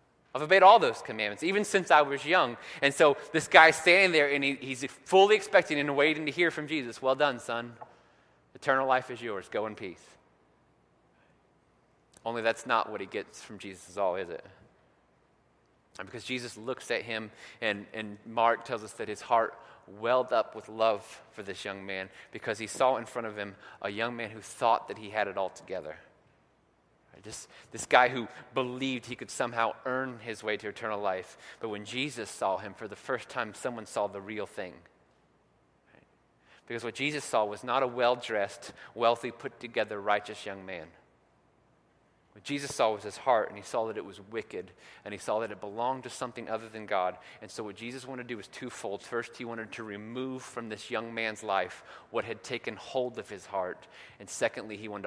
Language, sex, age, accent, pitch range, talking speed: English, male, 30-49, American, 105-130 Hz, 200 wpm